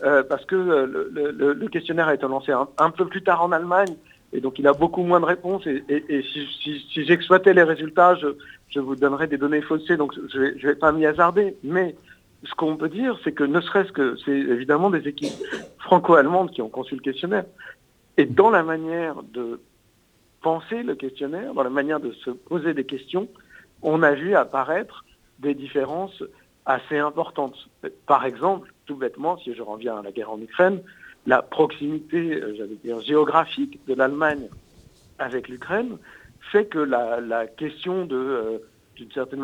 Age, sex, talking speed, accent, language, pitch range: 60-79, male, 185 wpm, French, French, 135-175 Hz